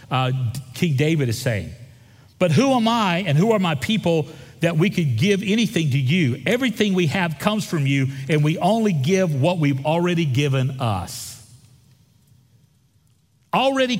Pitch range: 120-175 Hz